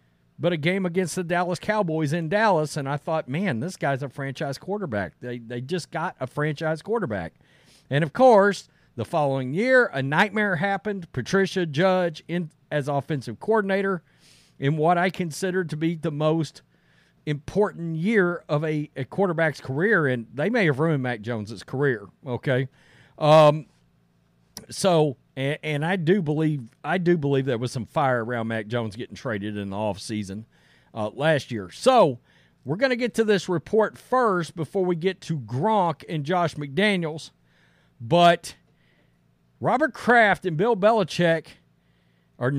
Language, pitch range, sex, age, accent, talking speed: English, 135-190 Hz, male, 40-59, American, 160 wpm